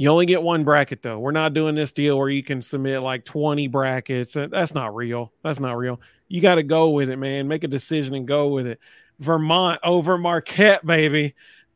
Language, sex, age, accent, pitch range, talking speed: English, male, 40-59, American, 135-165 Hz, 215 wpm